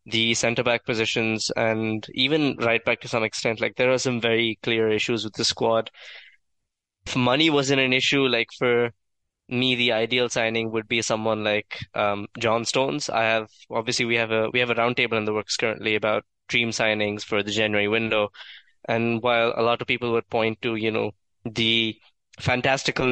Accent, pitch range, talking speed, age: Indian, 110-125 Hz, 190 wpm, 20-39